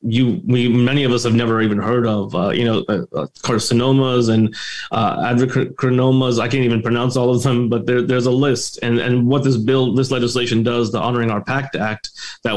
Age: 20-39